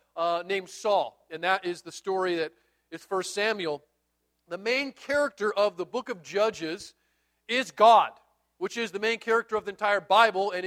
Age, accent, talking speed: 40-59, American, 180 wpm